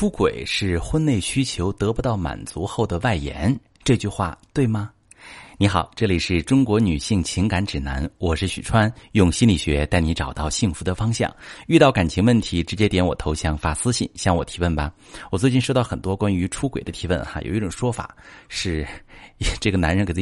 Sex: male